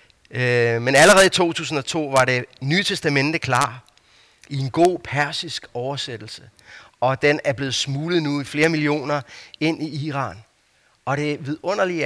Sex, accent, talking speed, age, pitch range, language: male, native, 145 wpm, 30-49, 120-150 Hz, Danish